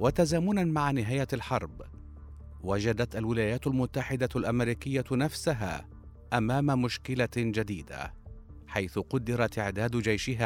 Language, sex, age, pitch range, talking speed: Arabic, male, 50-69, 100-125 Hz, 90 wpm